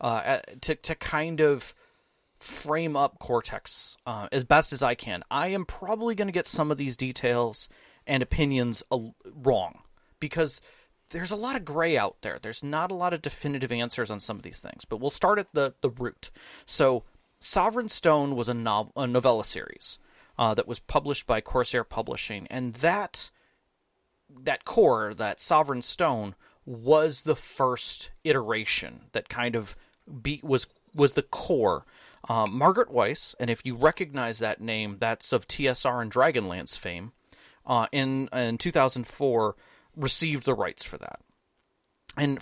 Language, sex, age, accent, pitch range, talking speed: English, male, 30-49, American, 120-160 Hz, 170 wpm